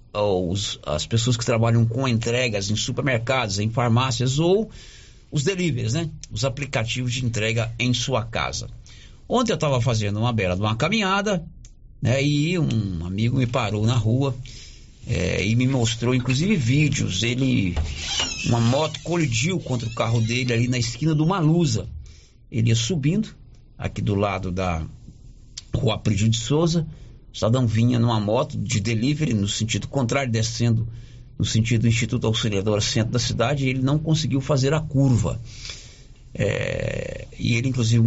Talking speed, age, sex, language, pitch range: 155 wpm, 60-79, male, Portuguese, 115-140 Hz